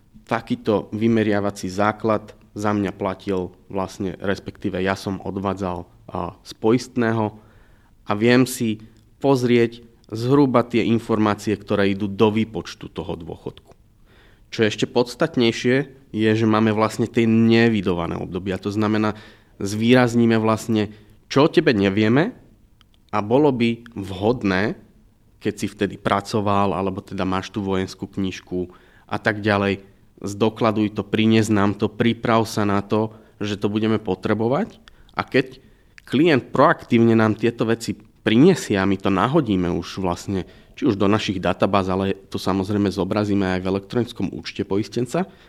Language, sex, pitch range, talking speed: Slovak, male, 100-120 Hz, 135 wpm